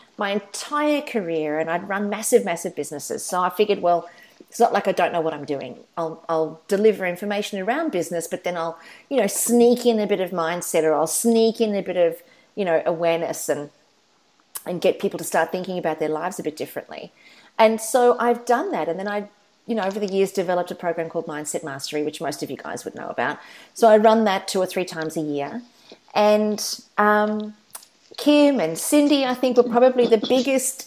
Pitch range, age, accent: 175-235 Hz, 40-59, Australian